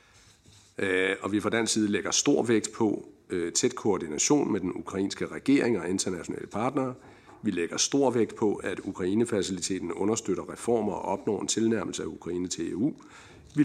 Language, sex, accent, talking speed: Danish, male, native, 165 wpm